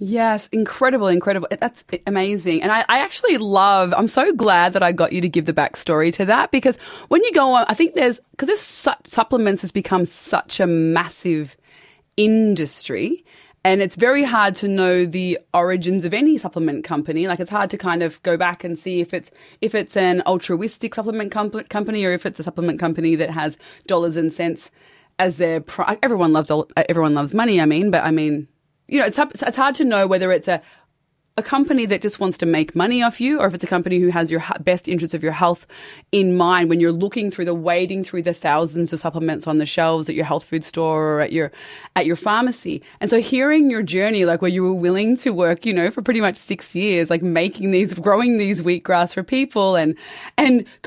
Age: 20-39